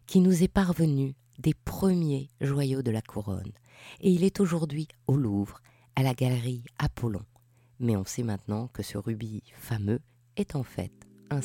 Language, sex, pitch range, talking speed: French, female, 115-170 Hz, 170 wpm